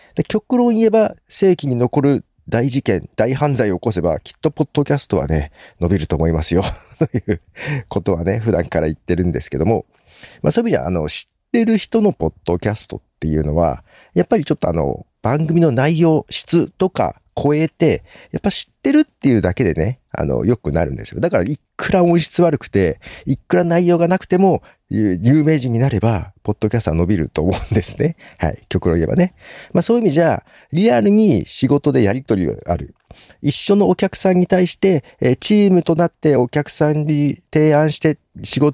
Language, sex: Japanese, male